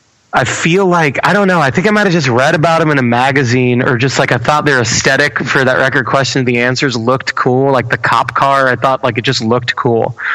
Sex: male